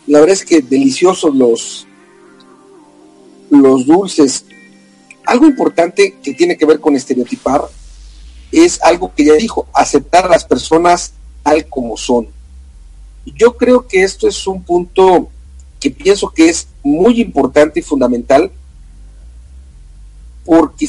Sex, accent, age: male, Mexican, 50-69